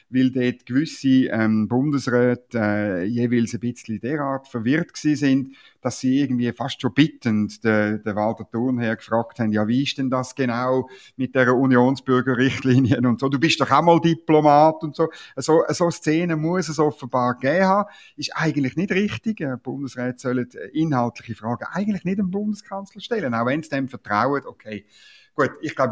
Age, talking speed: 50-69, 170 wpm